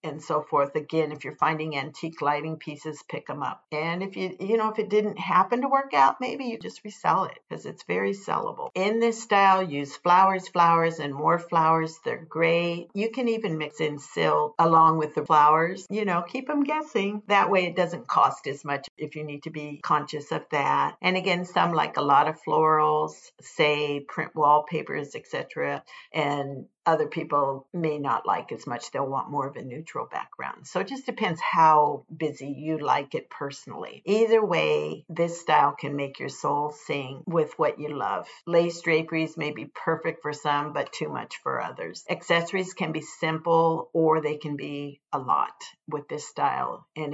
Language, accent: English, American